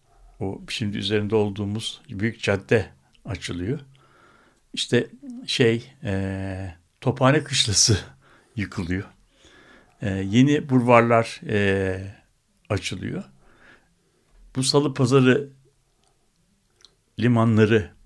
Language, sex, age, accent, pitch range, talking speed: Turkish, male, 60-79, native, 105-135 Hz, 75 wpm